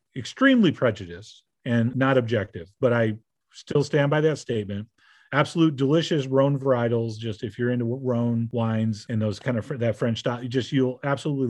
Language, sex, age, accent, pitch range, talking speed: English, male, 40-59, American, 125-160 Hz, 165 wpm